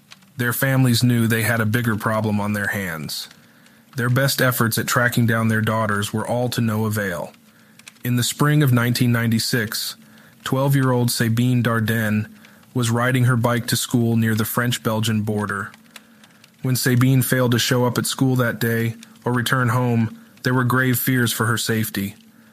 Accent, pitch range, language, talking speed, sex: American, 115-130 Hz, English, 165 wpm, male